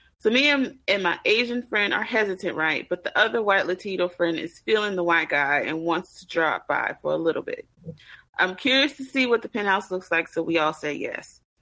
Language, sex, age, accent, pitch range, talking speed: English, female, 30-49, American, 175-220 Hz, 225 wpm